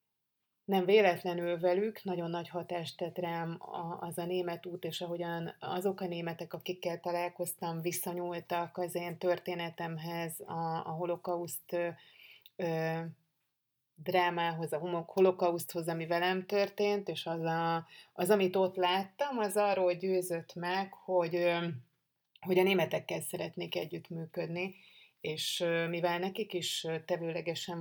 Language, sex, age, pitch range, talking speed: Hungarian, female, 30-49, 170-185 Hz, 115 wpm